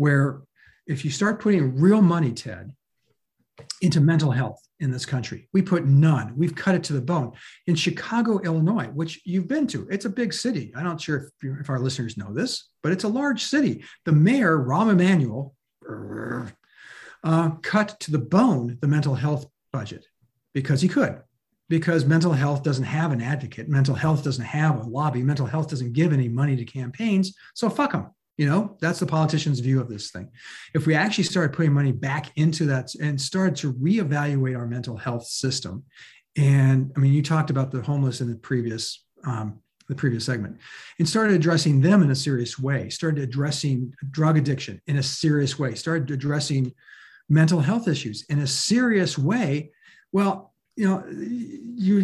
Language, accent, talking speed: English, American, 180 wpm